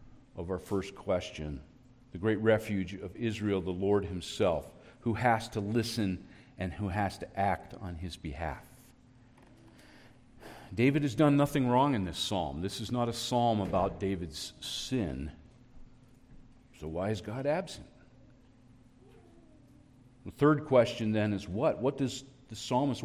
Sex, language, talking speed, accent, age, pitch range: male, English, 145 wpm, American, 40-59, 105-130 Hz